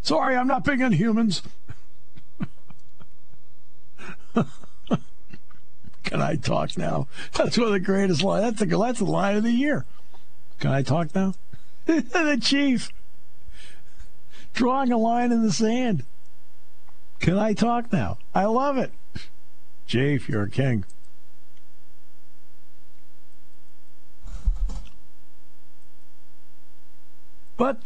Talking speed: 105 wpm